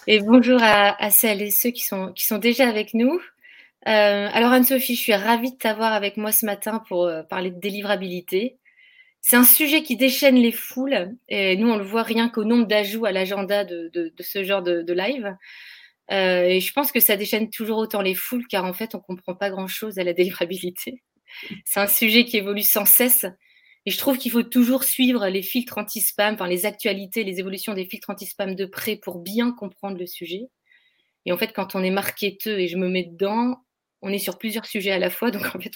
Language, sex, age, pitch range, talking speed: French, female, 30-49, 190-235 Hz, 220 wpm